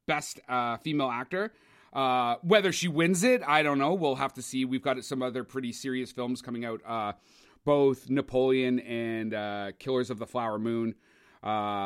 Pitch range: 130-200 Hz